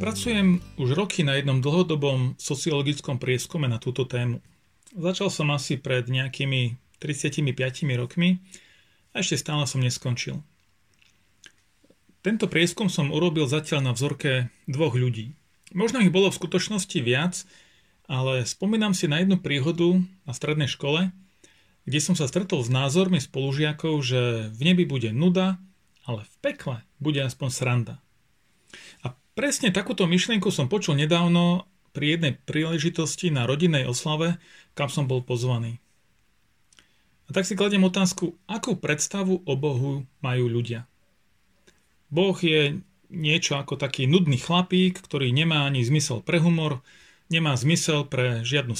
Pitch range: 130-180 Hz